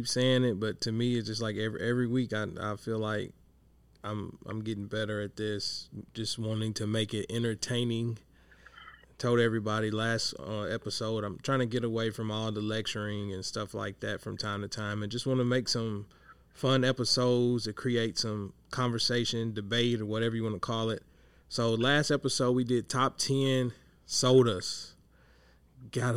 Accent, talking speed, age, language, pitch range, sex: American, 180 wpm, 20-39, English, 105-125 Hz, male